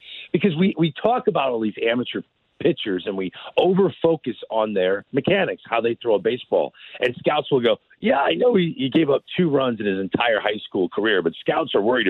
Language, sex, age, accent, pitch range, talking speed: English, male, 40-59, American, 140-210 Hz, 215 wpm